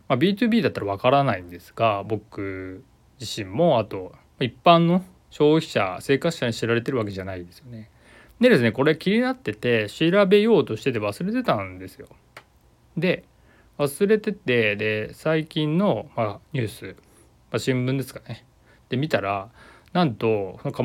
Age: 20-39